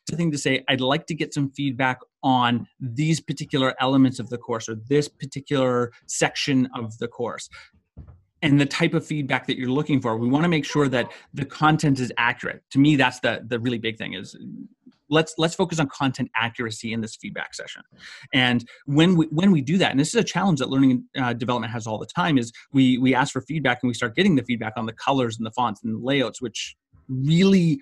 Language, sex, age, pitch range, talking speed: English, male, 30-49, 120-150 Hz, 225 wpm